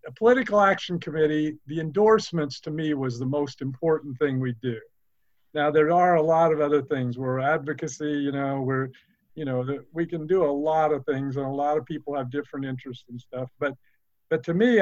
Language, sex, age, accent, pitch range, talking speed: English, male, 50-69, American, 140-180 Hz, 205 wpm